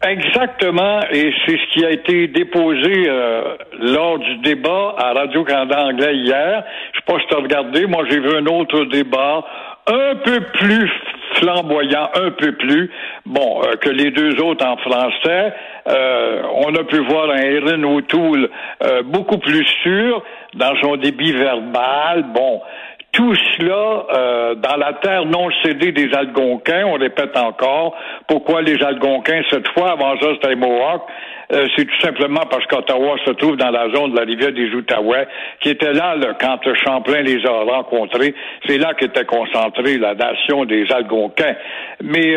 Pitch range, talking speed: 140-185 Hz, 165 wpm